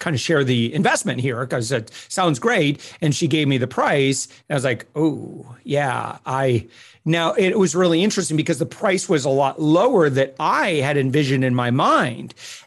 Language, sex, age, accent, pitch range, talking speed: English, male, 40-59, American, 135-180 Hz, 200 wpm